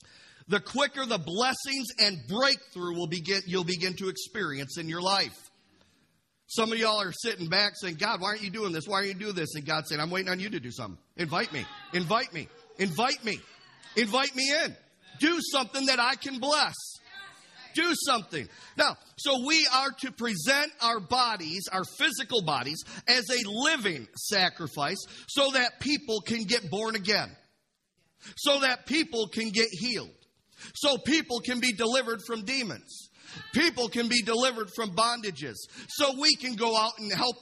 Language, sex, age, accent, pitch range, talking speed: English, male, 40-59, American, 170-245 Hz, 175 wpm